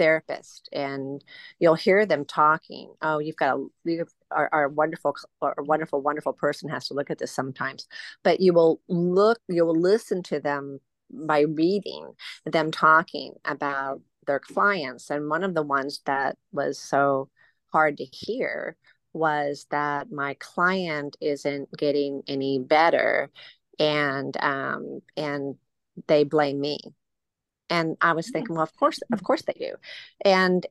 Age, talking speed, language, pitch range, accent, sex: 40-59, 155 wpm, English, 145-190 Hz, American, female